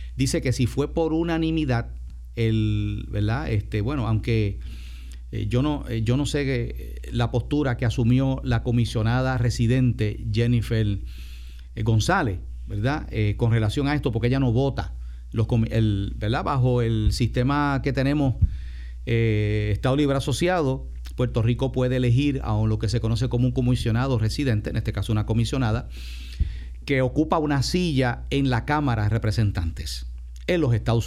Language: Spanish